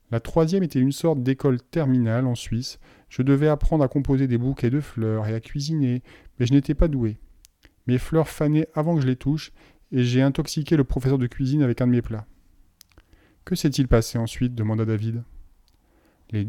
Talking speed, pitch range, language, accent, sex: 195 wpm, 110-140 Hz, French, French, male